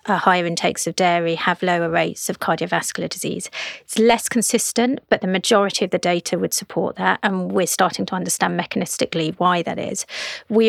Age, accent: 30-49, British